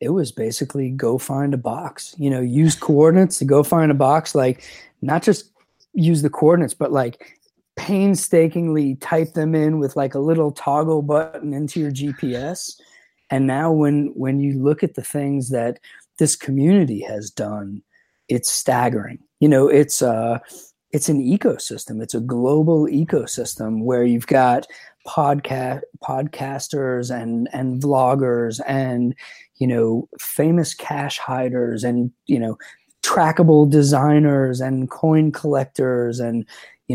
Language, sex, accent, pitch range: English, male, American, 125-155 Hz